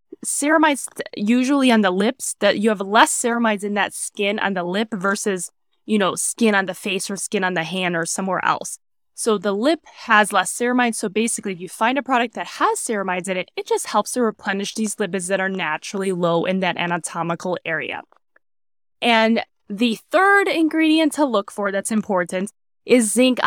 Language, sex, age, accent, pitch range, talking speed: English, female, 10-29, American, 195-245 Hz, 190 wpm